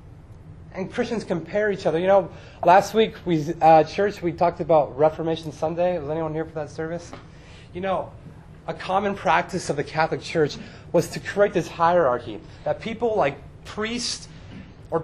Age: 30-49